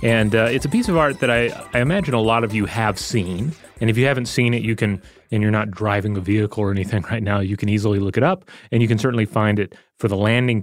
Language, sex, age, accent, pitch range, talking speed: English, male, 30-49, American, 105-125 Hz, 280 wpm